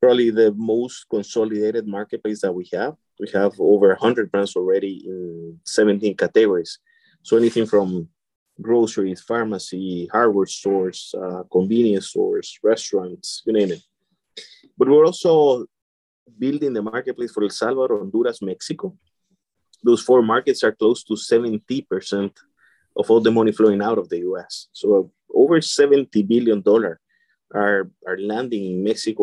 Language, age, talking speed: English, 30-49, 140 wpm